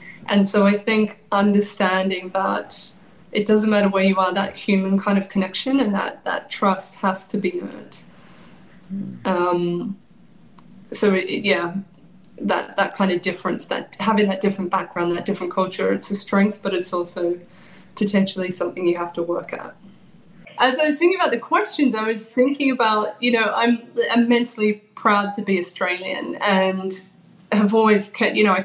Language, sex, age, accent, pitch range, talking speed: English, female, 20-39, British, 190-210 Hz, 170 wpm